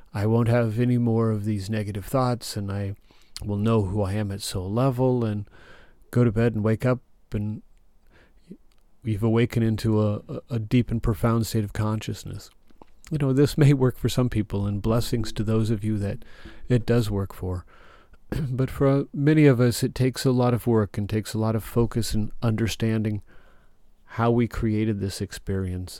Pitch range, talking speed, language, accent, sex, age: 100-115 Hz, 185 wpm, English, American, male, 40-59